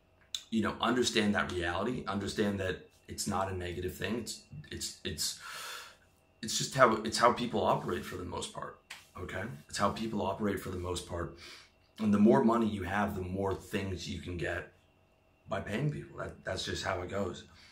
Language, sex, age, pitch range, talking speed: English, male, 30-49, 90-100 Hz, 190 wpm